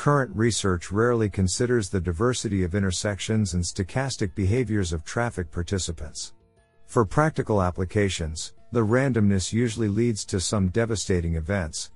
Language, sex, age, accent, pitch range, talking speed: English, male, 50-69, American, 90-115 Hz, 125 wpm